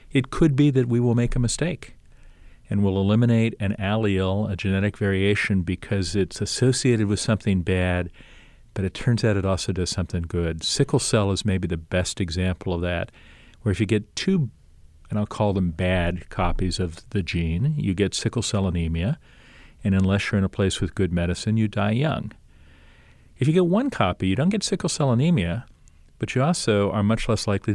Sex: male